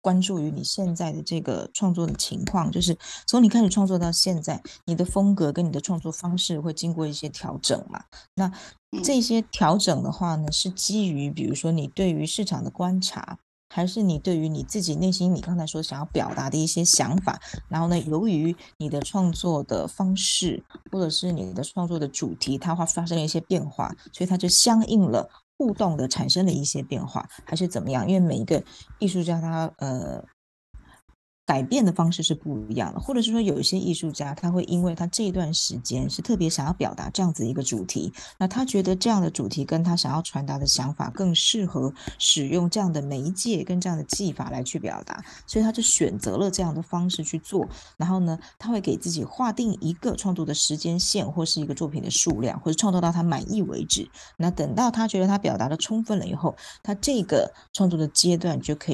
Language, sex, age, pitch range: Chinese, female, 20-39, 155-190 Hz